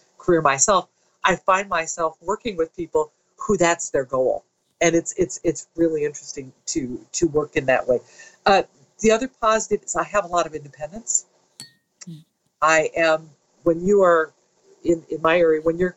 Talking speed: 175 wpm